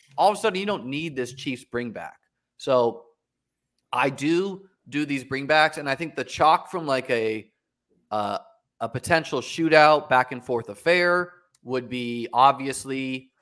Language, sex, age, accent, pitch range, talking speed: English, male, 30-49, American, 120-145 Hz, 165 wpm